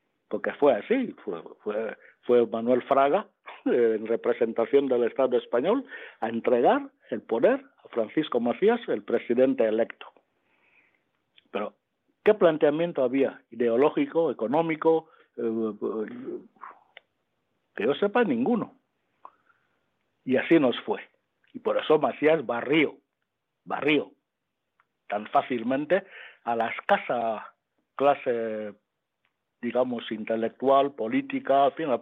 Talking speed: 100 wpm